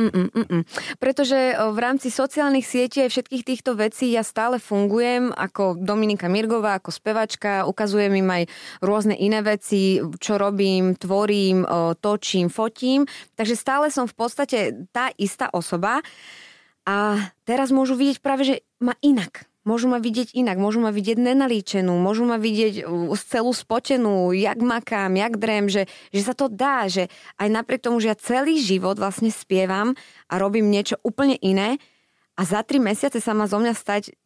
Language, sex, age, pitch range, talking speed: Slovak, female, 20-39, 195-245 Hz, 165 wpm